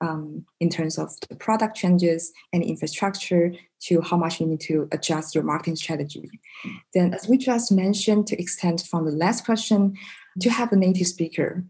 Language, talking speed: English, 180 wpm